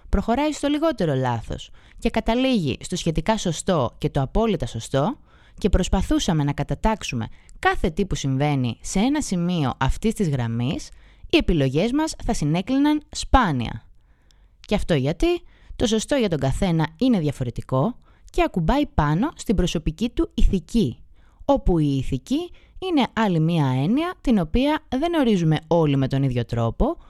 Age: 20-39